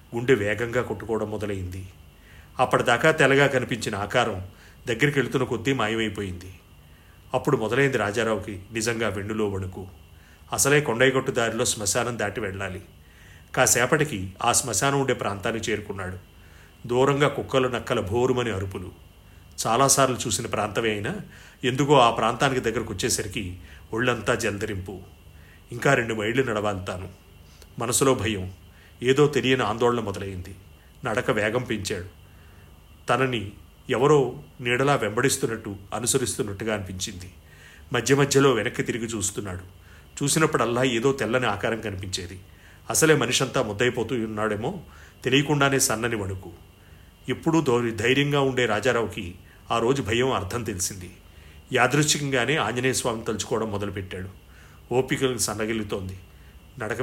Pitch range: 95-125 Hz